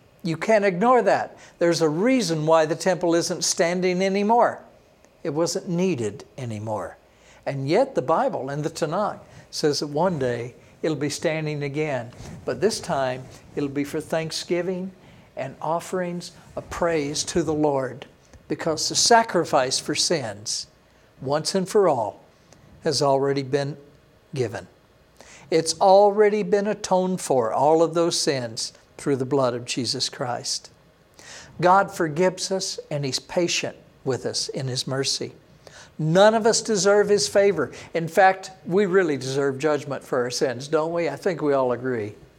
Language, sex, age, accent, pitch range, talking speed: English, male, 60-79, American, 135-180 Hz, 150 wpm